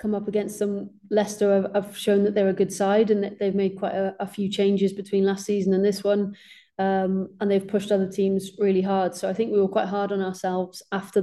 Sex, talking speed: female, 235 wpm